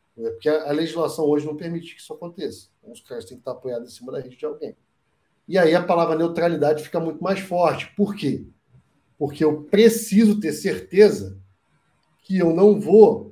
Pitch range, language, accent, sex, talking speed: 150-200 Hz, Portuguese, Brazilian, male, 190 wpm